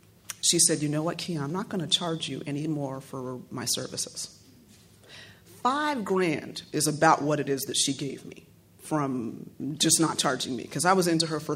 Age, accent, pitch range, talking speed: 40-59, American, 145-175 Hz, 195 wpm